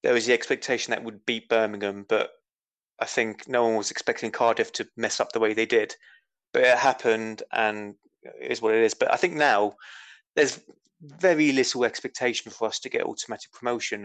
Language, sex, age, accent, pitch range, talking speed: English, male, 20-39, British, 110-135 Hz, 190 wpm